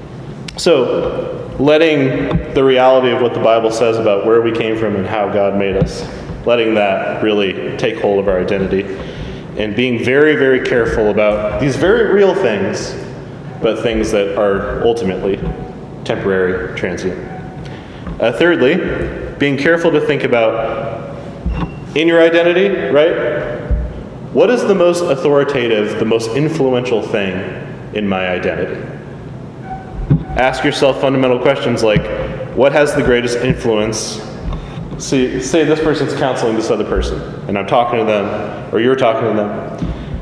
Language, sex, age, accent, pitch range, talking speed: English, male, 20-39, American, 110-155 Hz, 140 wpm